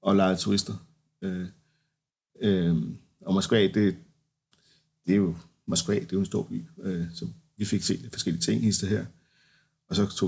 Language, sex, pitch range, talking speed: Danish, male, 90-150 Hz, 165 wpm